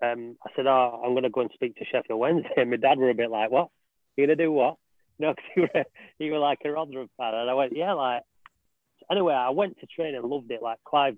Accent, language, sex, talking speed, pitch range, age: British, English, male, 265 wpm, 120-140 Hz, 30-49